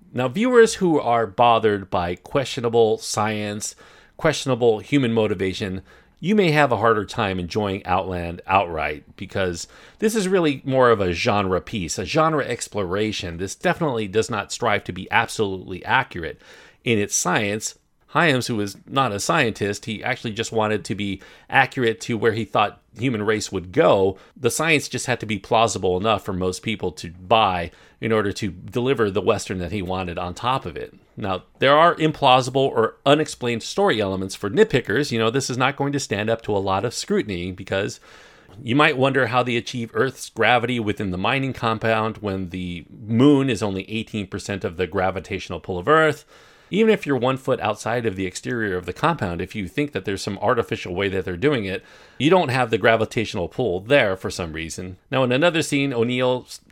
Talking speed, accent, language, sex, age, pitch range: 190 wpm, American, English, male, 40-59, 95-130 Hz